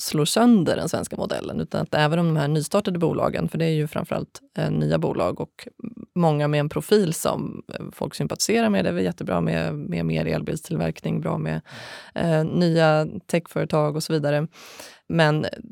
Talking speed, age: 180 wpm, 20-39